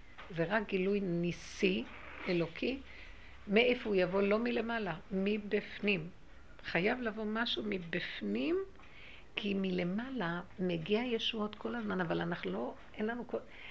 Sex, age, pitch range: female, 60-79, 175-225 Hz